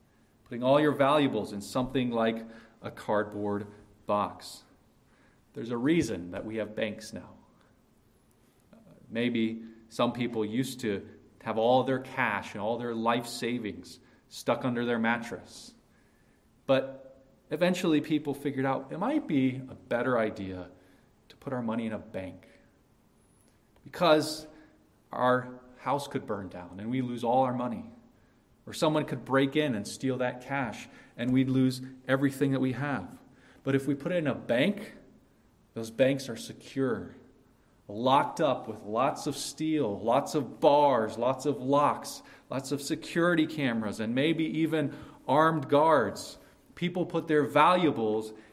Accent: American